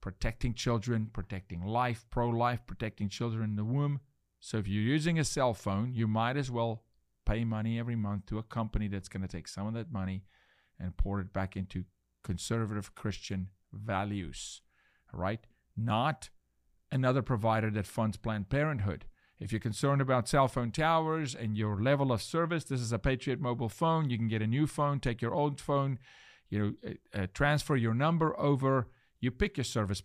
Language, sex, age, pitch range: English, male, 40-59, 105-135 Hz